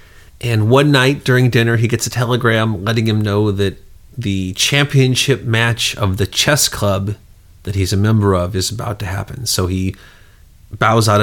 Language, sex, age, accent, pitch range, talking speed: English, male, 30-49, American, 100-125 Hz, 175 wpm